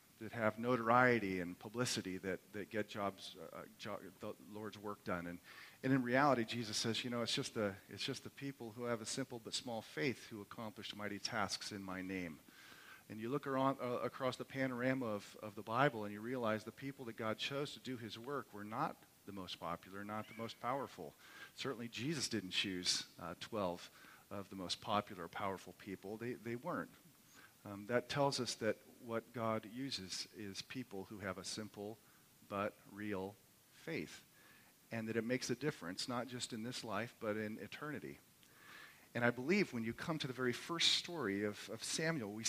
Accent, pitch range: American, 105-130 Hz